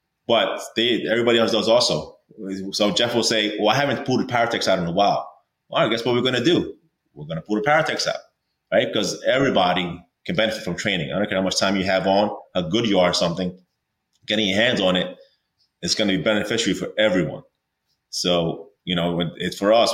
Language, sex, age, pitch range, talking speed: English, male, 20-39, 95-125 Hz, 230 wpm